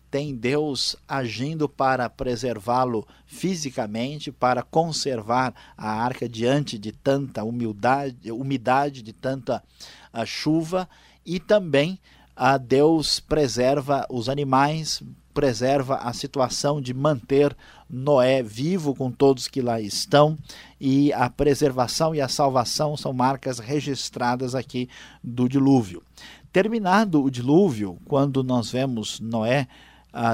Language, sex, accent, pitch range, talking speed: Portuguese, male, Brazilian, 120-140 Hz, 110 wpm